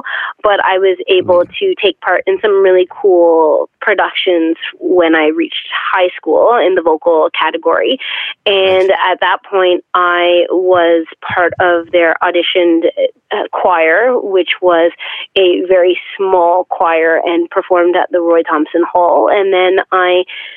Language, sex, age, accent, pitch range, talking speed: English, female, 30-49, American, 170-220 Hz, 140 wpm